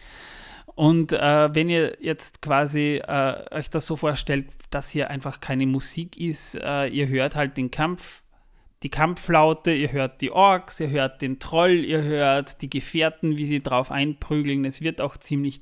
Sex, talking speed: male, 175 wpm